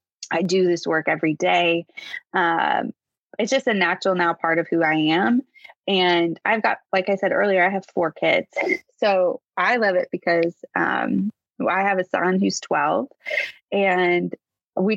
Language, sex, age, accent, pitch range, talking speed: English, female, 20-39, American, 170-205 Hz, 170 wpm